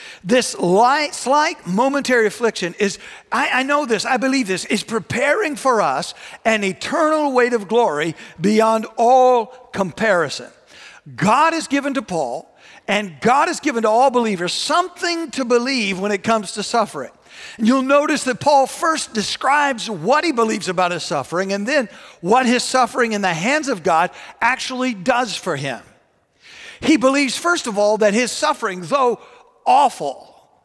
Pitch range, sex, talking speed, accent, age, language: 200-270 Hz, male, 160 wpm, American, 50-69, English